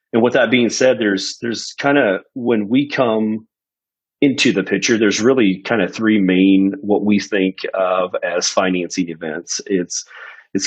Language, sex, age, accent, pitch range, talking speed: English, male, 40-59, American, 95-105 Hz, 170 wpm